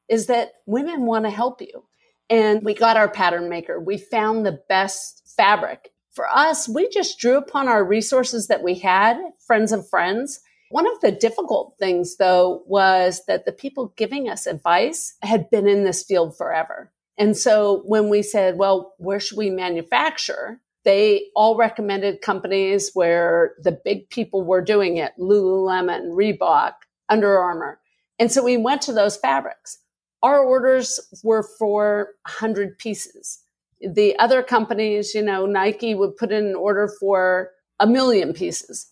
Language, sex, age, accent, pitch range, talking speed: English, female, 50-69, American, 190-235 Hz, 160 wpm